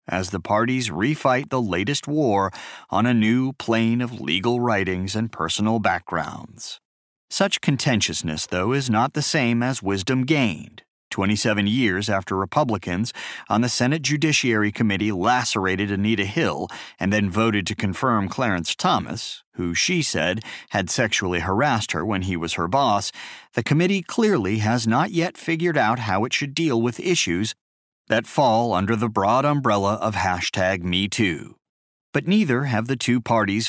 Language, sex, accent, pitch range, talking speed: English, male, American, 100-130 Hz, 155 wpm